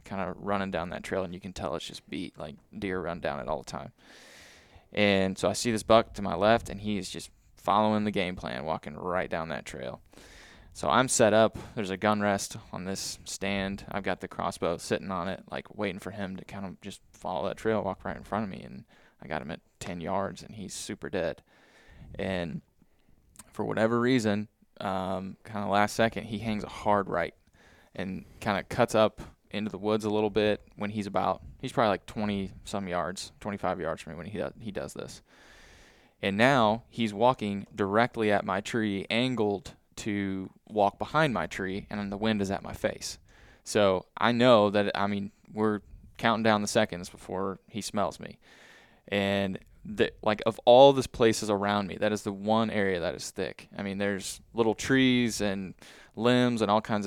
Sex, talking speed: male, 205 wpm